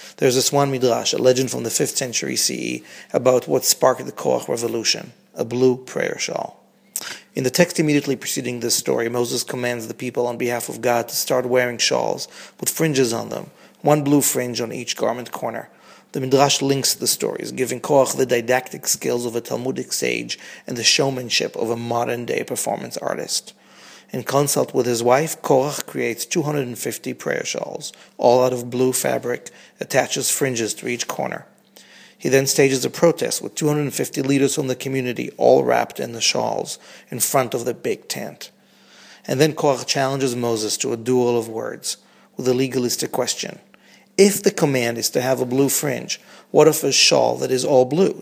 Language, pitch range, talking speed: English, 120-140 Hz, 180 wpm